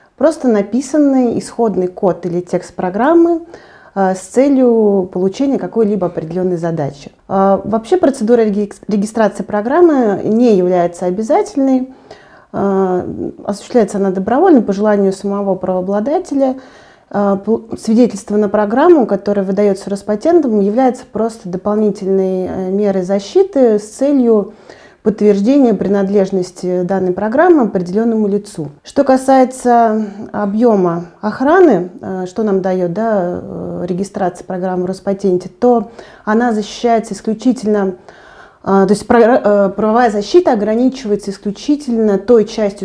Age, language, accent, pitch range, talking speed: 30-49, Russian, native, 195-240 Hz, 95 wpm